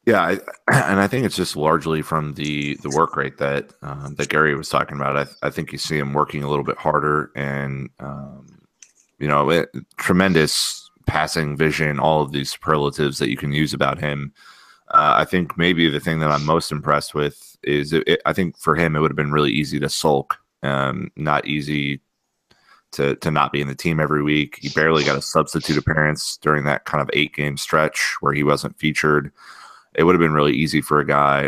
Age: 30-49